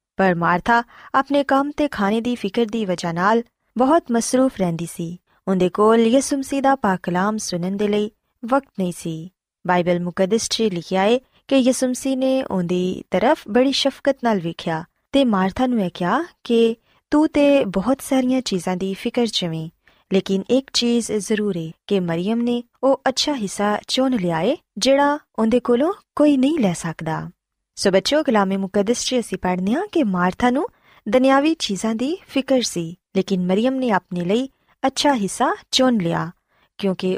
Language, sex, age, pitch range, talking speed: Punjabi, female, 20-39, 185-260 Hz, 150 wpm